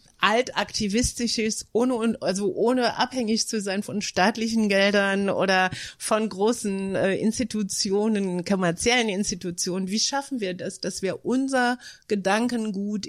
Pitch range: 195-230 Hz